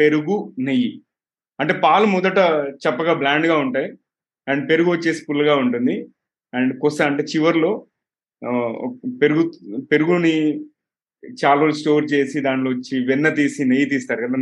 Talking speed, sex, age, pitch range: 115 wpm, male, 30-49, 130-160 Hz